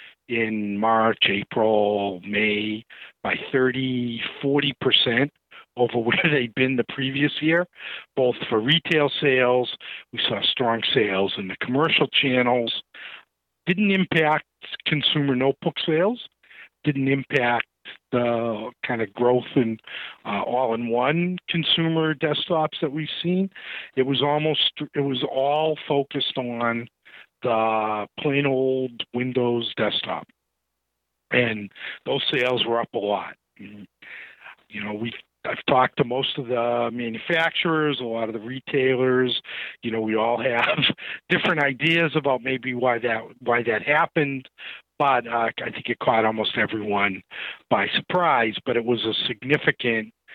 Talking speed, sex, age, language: 130 wpm, male, 50-69, English